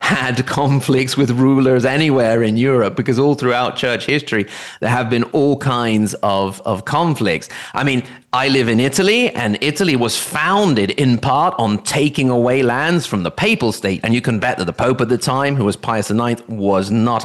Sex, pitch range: male, 105-135 Hz